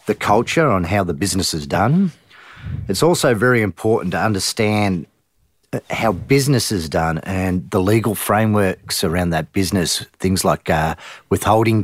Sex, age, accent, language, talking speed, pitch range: male, 40-59, Australian, English, 145 wpm, 100-115 Hz